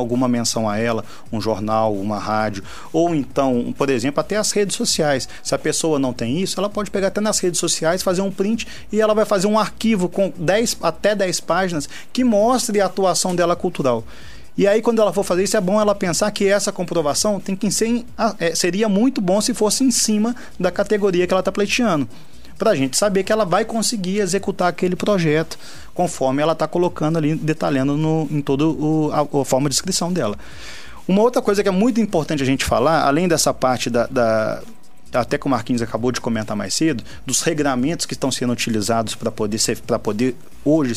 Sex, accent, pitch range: male, Brazilian, 130-195 Hz